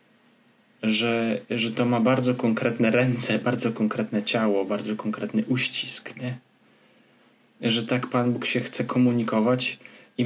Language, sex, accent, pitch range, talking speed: Polish, male, native, 110-125 Hz, 130 wpm